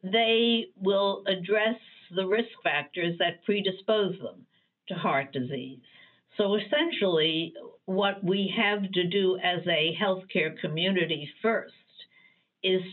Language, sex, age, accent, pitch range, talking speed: English, female, 60-79, American, 160-210 Hz, 115 wpm